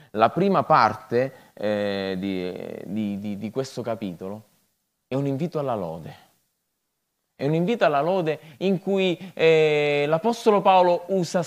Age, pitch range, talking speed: 20-39, 150-210 Hz, 135 wpm